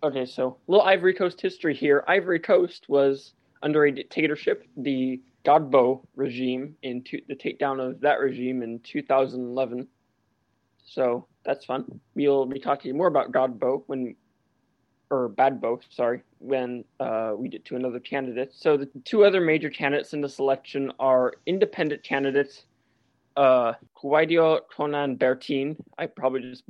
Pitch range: 130-150 Hz